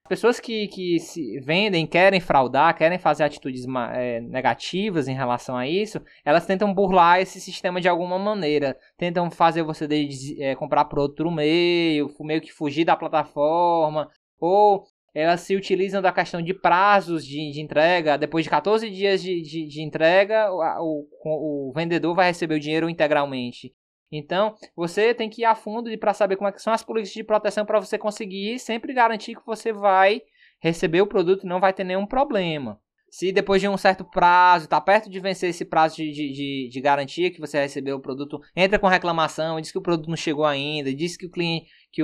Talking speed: 190 wpm